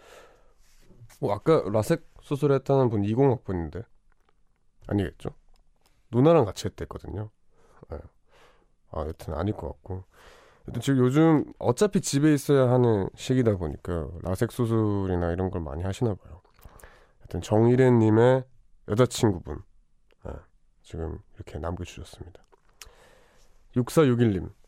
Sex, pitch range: male, 95-125 Hz